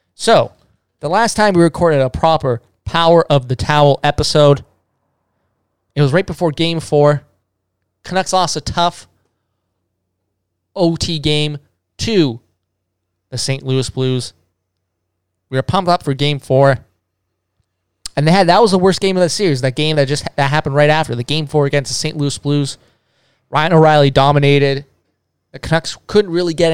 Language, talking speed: English, 160 wpm